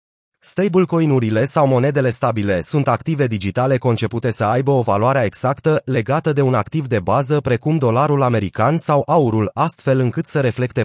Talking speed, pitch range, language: 155 wpm, 115-145 Hz, Romanian